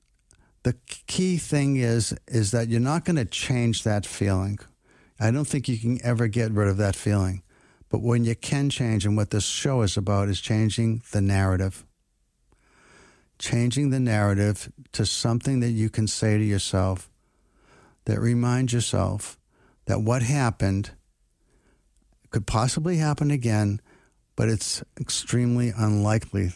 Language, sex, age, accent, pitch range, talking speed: English, male, 60-79, American, 105-125 Hz, 145 wpm